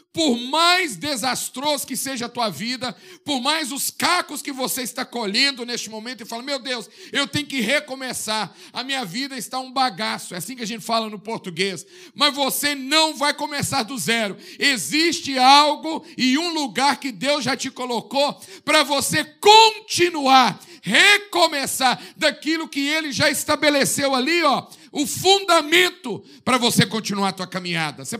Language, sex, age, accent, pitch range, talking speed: Portuguese, male, 50-69, Brazilian, 220-285 Hz, 165 wpm